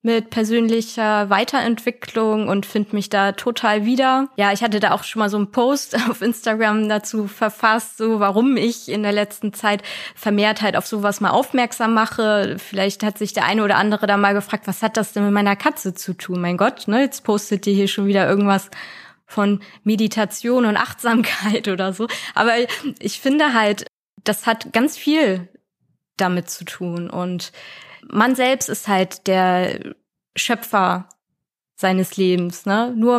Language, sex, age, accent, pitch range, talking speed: German, female, 20-39, German, 195-230 Hz, 170 wpm